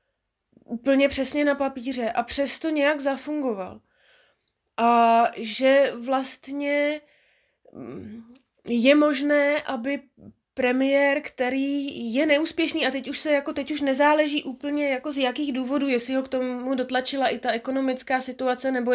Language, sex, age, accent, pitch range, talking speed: Czech, female, 20-39, native, 235-275 Hz, 130 wpm